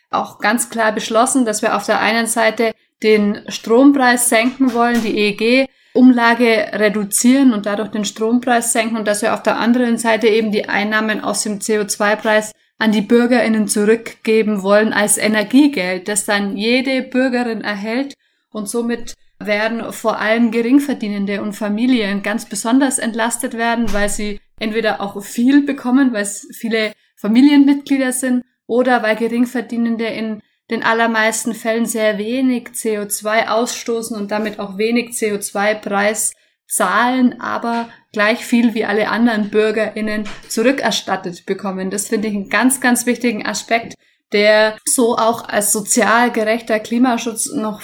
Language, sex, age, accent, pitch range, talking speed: German, female, 20-39, German, 215-240 Hz, 140 wpm